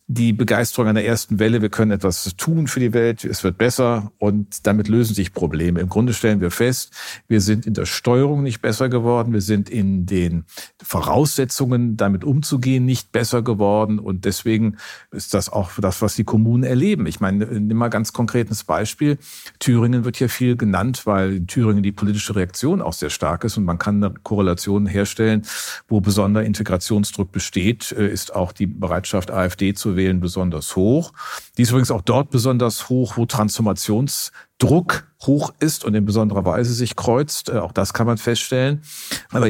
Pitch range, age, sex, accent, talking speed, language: 100-120 Hz, 50-69, male, German, 180 wpm, German